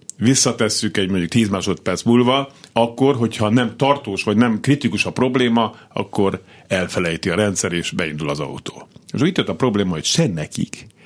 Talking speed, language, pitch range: 155 wpm, Hungarian, 95-130 Hz